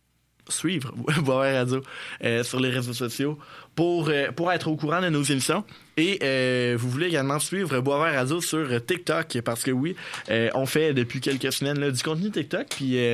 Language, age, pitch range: French, 20-39, 125-150 Hz